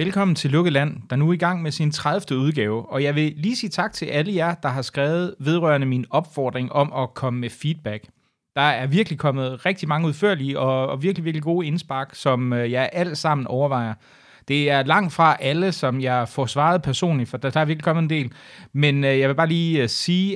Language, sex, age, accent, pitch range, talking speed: Danish, male, 30-49, native, 125-165 Hz, 215 wpm